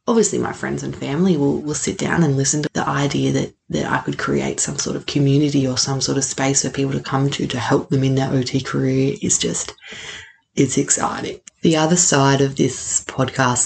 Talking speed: 220 wpm